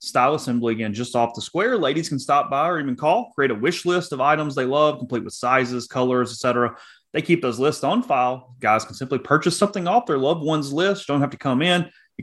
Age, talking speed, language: 30-49, 240 wpm, English